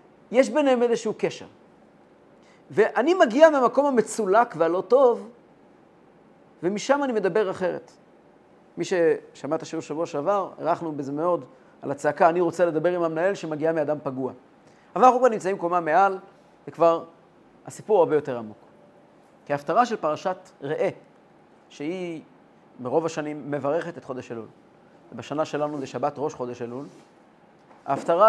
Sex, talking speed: male, 135 wpm